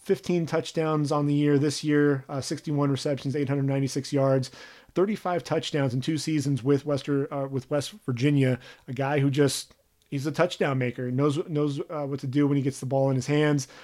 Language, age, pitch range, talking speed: English, 30-49, 135-155 Hz, 190 wpm